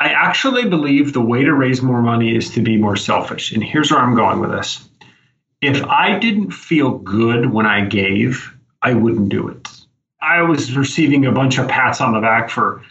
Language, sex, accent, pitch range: English, male, American, 115-155 Hz